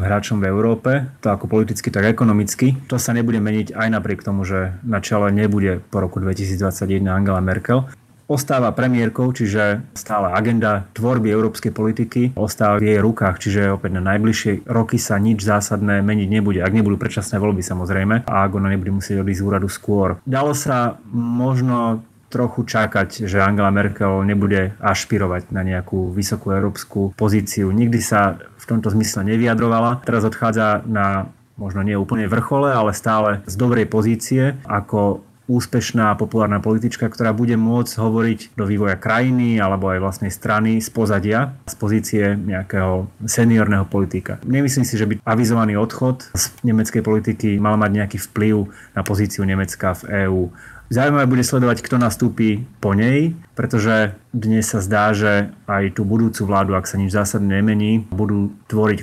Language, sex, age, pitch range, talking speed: Slovak, male, 30-49, 100-115 Hz, 160 wpm